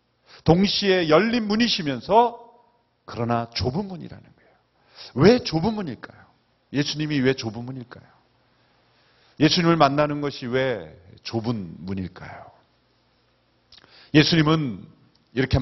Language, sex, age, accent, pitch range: Korean, male, 40-59, native, 140-215 Hz